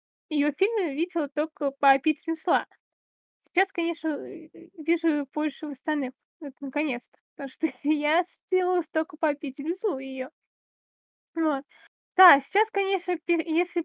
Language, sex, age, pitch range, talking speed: Russian, female, 20-39, 290-350 Hz, 115 wpm